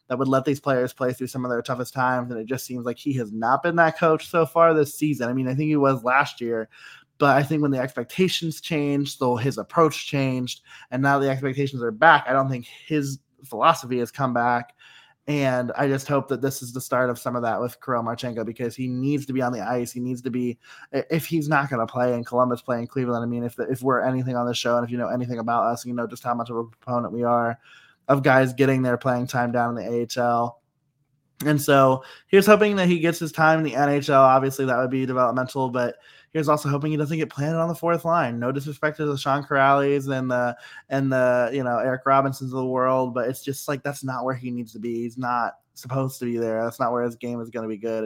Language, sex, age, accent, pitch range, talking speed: English, male, 20-39, American, 120-150 Hz, 260 wpm